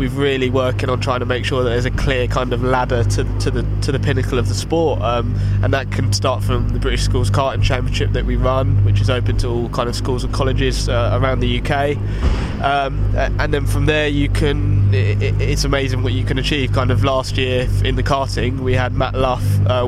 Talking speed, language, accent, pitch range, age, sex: 240 wpm, English, British, 100-125 Hz, 20-39, male